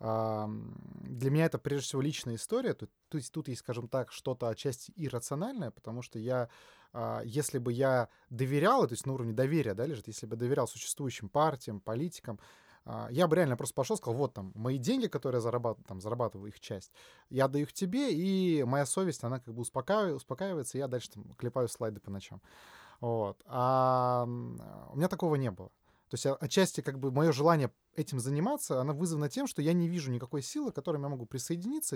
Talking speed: 190 wpm